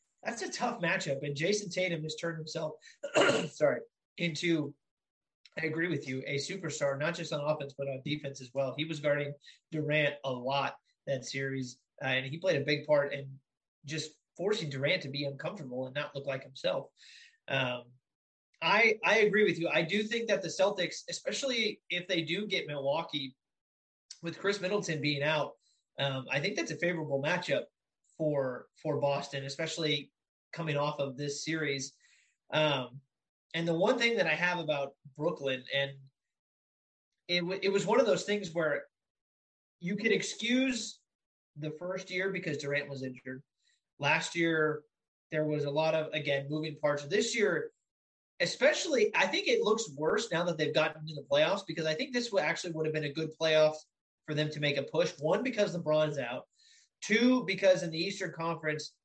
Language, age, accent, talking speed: English, 20-39, American, 180 wpm